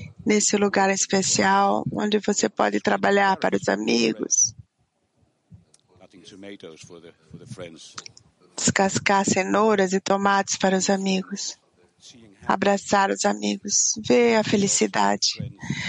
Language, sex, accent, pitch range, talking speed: English, female, Brazilian, 140-235 Hz, 85 wpm